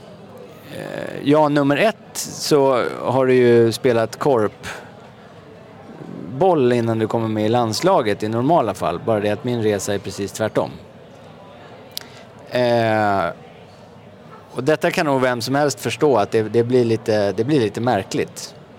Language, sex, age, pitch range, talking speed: English, male, 30-49, 115-150 Hz, 140 wpm